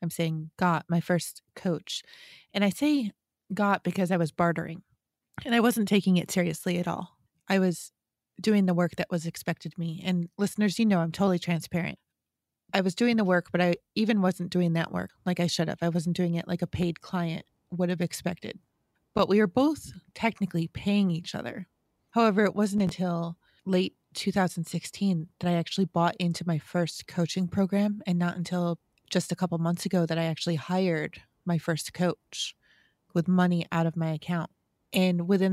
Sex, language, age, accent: female, English, 30-49, American